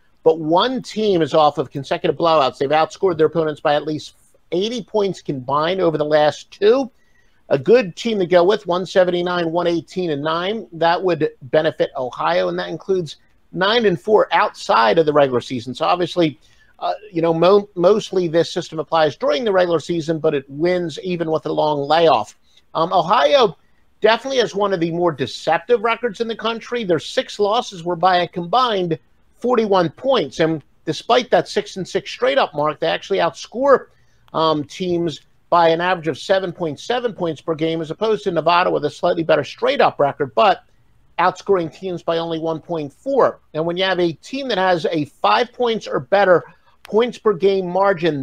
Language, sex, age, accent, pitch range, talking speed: English, male, 50-69, American, 155-205 Hz, 180 wpm